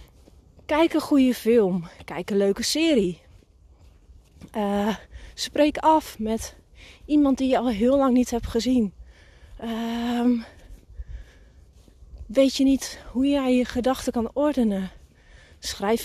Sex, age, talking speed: female, 30-49, 120 wpm